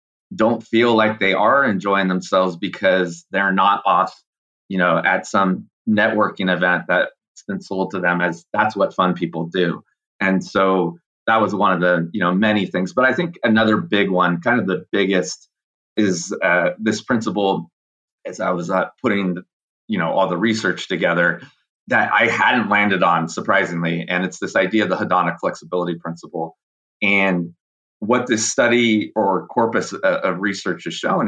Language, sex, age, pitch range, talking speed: English, male, 30-49, 90-105 Hz, 170 wpm